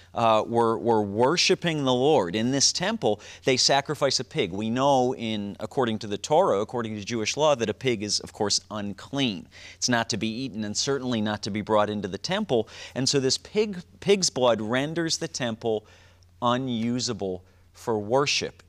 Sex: male